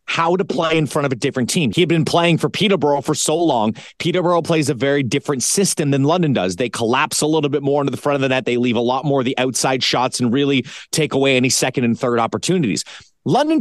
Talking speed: 255 wpm